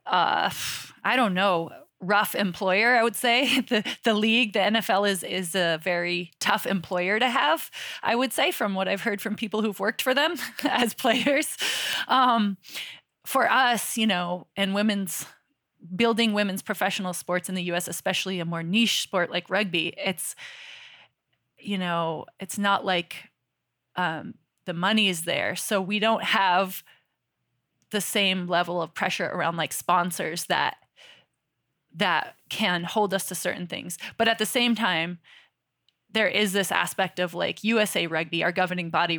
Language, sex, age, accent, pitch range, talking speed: English, female, 20-39, American, 175-220 Hz, 160 wpm